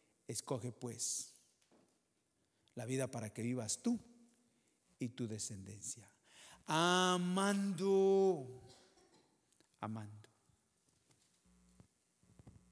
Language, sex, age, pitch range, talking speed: English, male, 50-69, 105-135 Hz, 60 wpm